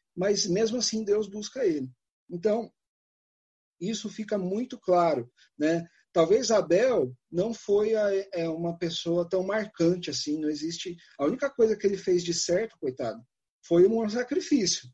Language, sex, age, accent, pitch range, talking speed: Portuguese, male, 40-59, Brazilian, 170-250 Hz, 140 wpm